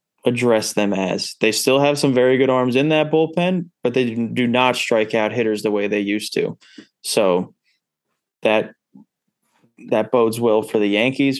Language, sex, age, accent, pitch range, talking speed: English, male, 20-39, American, 110-130 Hz, 175 wpm